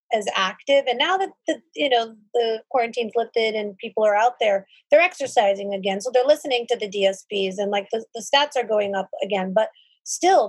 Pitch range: 215-275 Hz